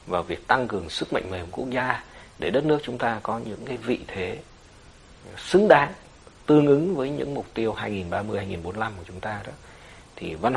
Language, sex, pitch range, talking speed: Vietnamese, male, 90-115 Hz, 205 wpm